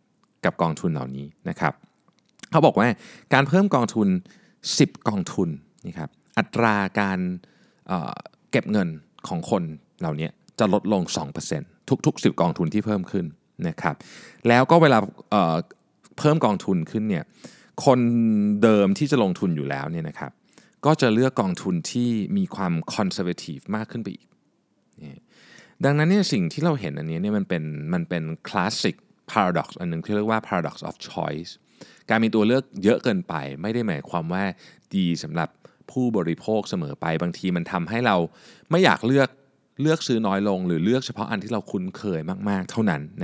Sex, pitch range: male, 90-135 Hz